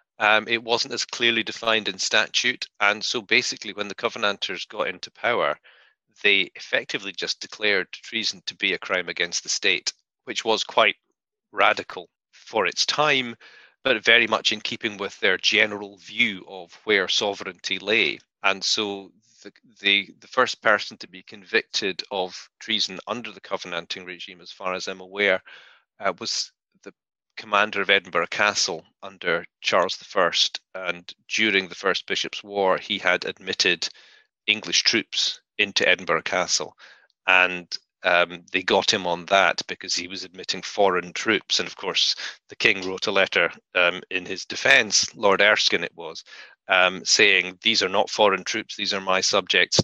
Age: 30-49